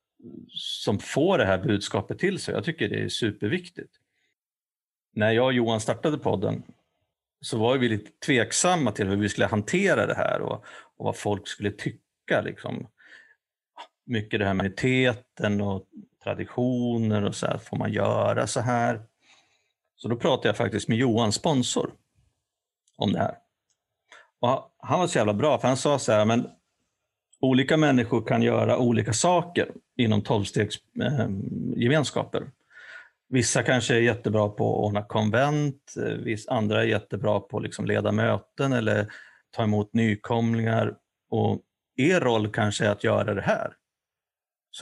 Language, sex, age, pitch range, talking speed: Swedish, male, 50-69, 105-125 Hz, 150 wpm